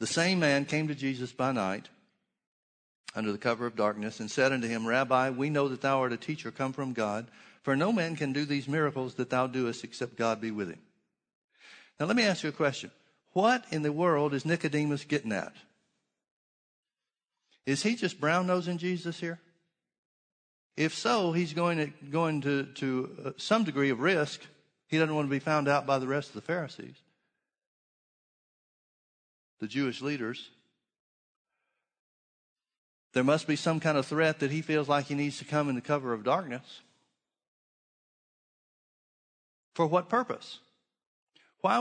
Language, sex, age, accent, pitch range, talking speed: English, male, 60-79, American, 135-175 Hz, 165 wpm